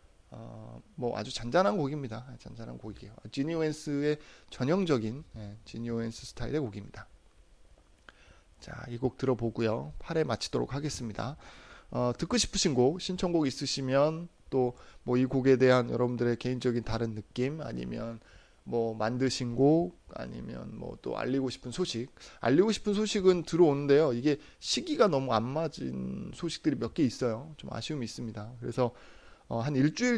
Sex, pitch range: male, 115-150 Hz